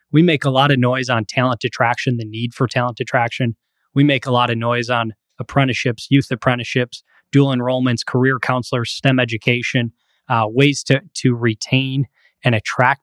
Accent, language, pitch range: American, English, 120-145 Hz